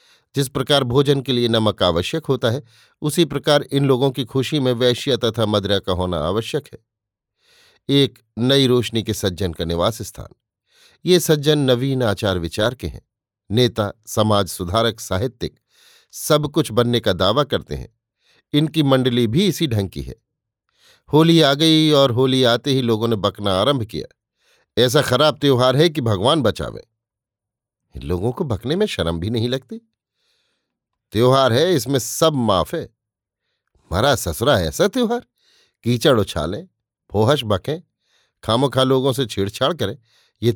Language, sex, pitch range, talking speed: Hindi, male, 110-145 Hz, 150 wpm